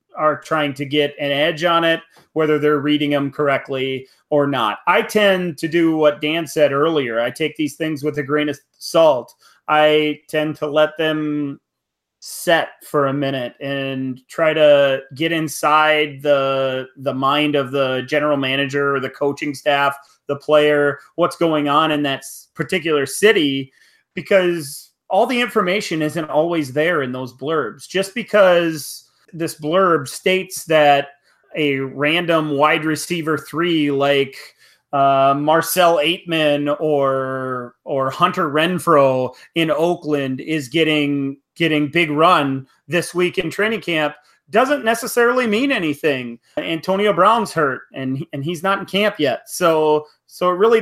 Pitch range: 140-170 Hz